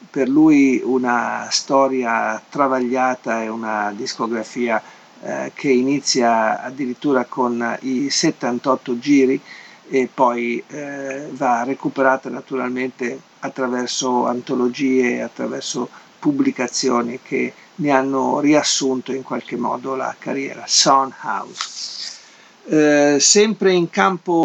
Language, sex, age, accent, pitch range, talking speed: Italian, male, 50-69, native, 130-150 Hz, 100 wpm